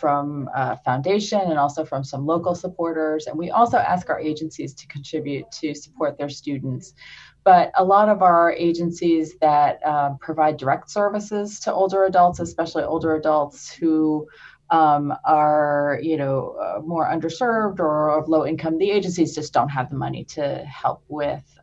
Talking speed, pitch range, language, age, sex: 165 wpm, 150-190 Hz, English, 30-49, female